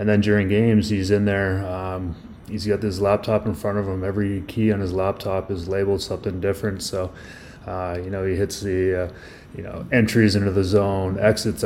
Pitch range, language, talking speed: 95-105 Hz, English, 205 wpm